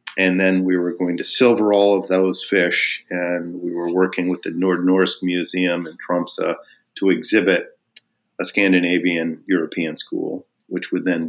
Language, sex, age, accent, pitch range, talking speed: English, male, 50-69, American, 90-110 Hz, 160 wpm